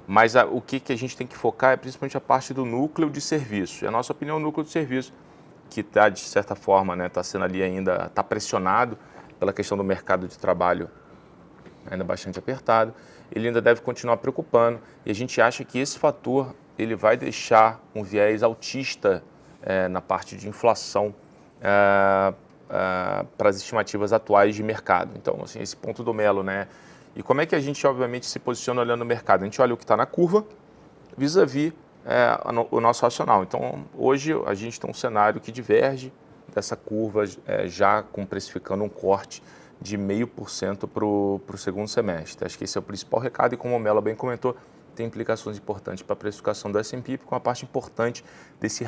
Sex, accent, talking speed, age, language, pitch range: male, Brazilian, 195 wpm, 20-39, Portuguese, 100-125 Hz